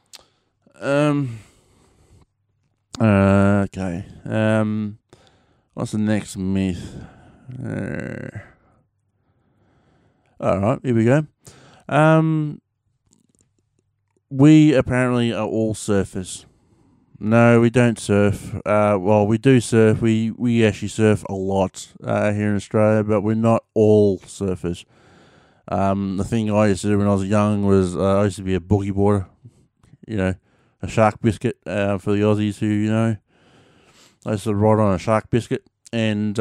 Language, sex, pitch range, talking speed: English, male, 100-120 Hz, 140 wpm